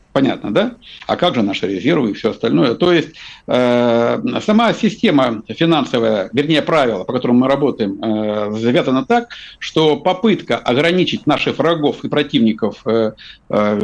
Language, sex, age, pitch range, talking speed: Russian, male, 60-79, 120-185 Hz, 145 wpm